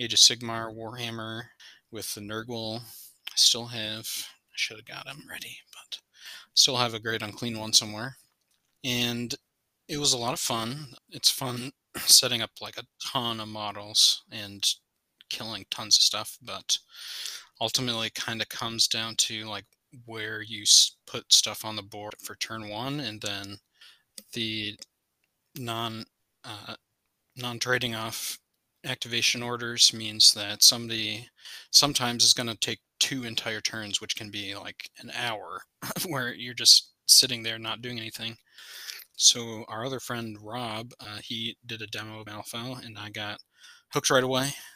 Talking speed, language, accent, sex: 155 wpm, English, American, male